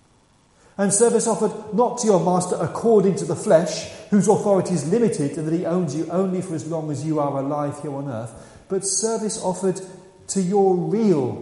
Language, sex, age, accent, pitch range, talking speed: English, male, 40-59, British, 125-185 Hz, 195 wpm